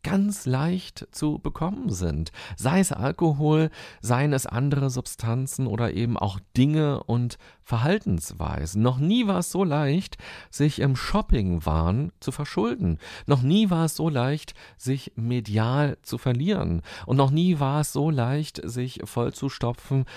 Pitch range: 110-150 Hz